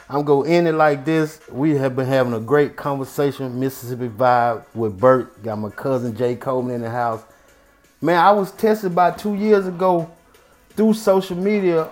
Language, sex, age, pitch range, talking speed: English, male, 30-49, 125-160 Hz, 185 wpm